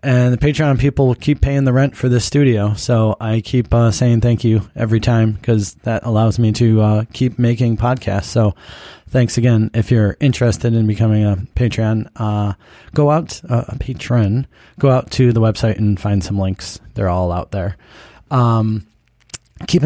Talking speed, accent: 180 wpm, American